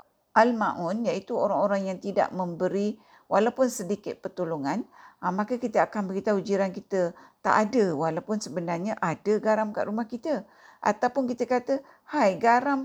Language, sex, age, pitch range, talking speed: Malay, female, 50-69, 190-245 Hz, 140 wpm